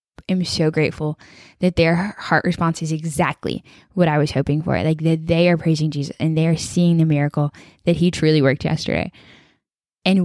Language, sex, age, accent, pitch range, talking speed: English, female, 10-29, American, 150-170 Hz, 180 wpm